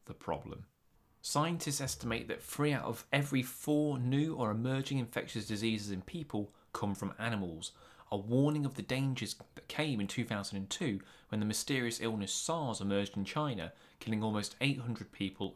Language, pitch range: English, 95-120 Hz